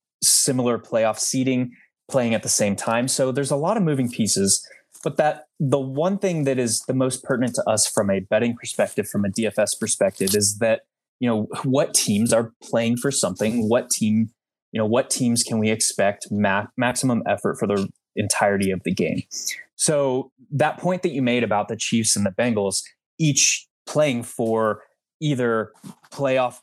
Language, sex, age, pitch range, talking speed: English, male, 20-39, 105-135 Hz, 180 wpm